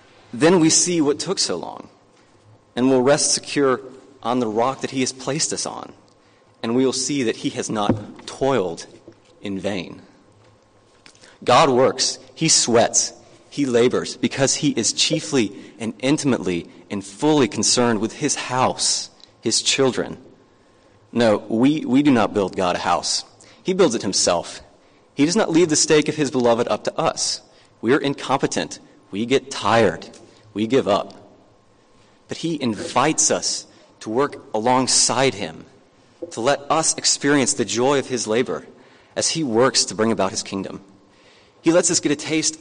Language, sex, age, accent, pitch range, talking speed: English, male, 30-49, American, 110-150 Hz, 165 wpm